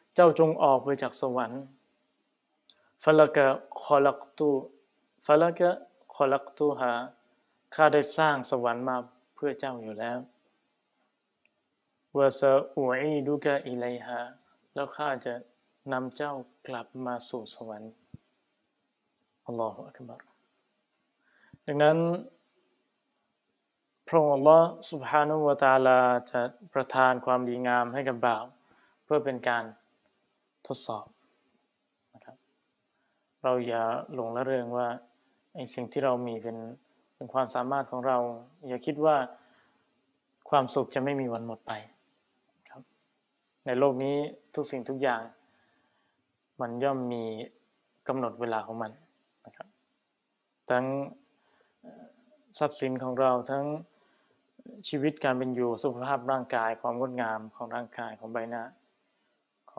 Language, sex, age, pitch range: Thai, male, 20-39, 120-145 Hz